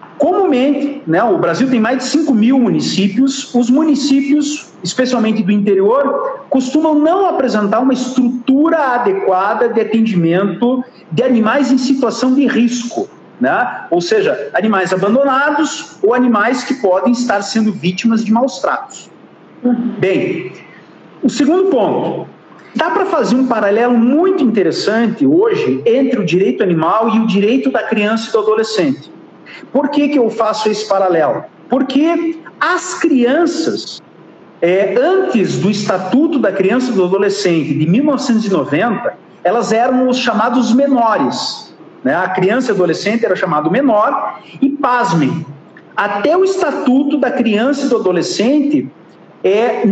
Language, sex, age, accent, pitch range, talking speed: Portuguese, male, 50-69, Brazilian, 210-285 Hz, 135 wpm